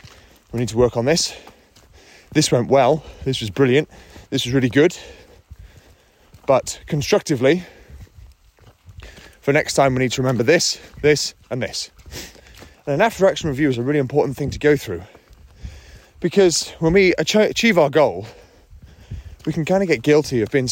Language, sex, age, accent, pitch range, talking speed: English, male, 30-49, British, 115-160 Hz, 160 wpm